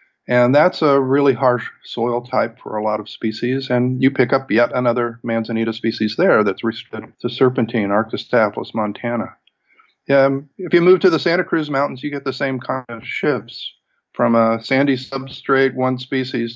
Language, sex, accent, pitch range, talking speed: English, male, American, 115-140 Hz, 180 wpm